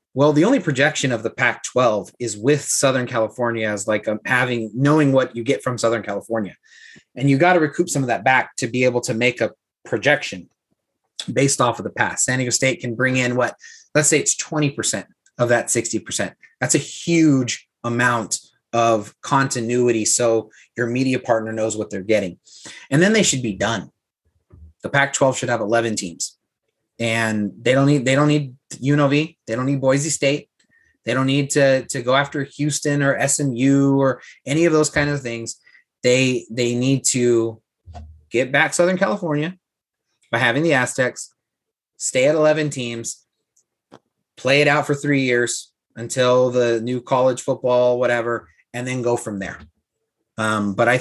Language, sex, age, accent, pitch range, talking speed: English, male, 30-49, American, 115-140 Hz, 175 wpm